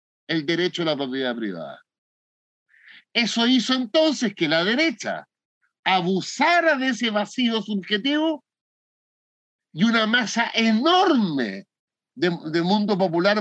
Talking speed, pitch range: 105 wpm, 180-245 Hz